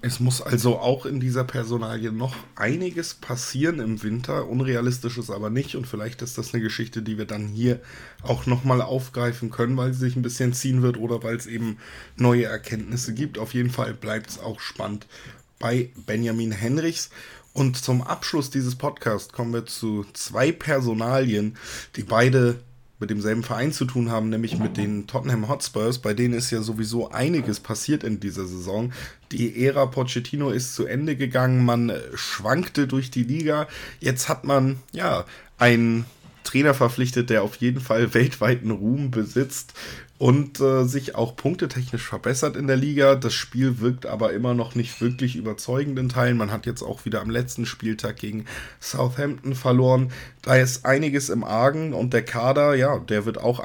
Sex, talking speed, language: male, 175 wpm, German